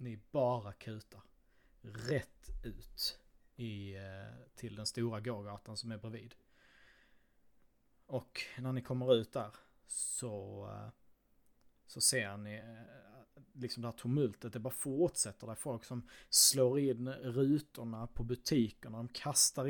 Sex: male